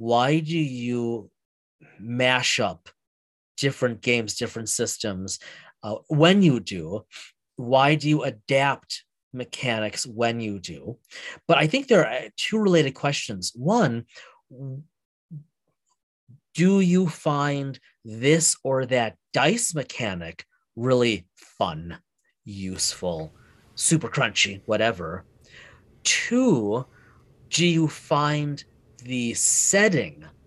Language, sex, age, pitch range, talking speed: English, male, 30-49, 115-150 Hz, 100 wpm